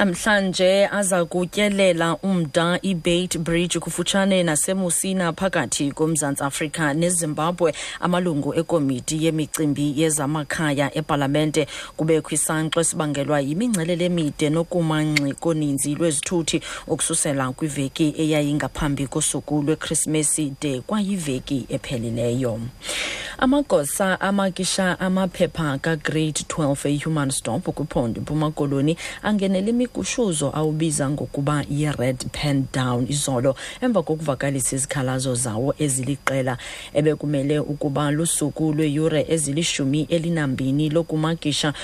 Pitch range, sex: 140-170 Hz, female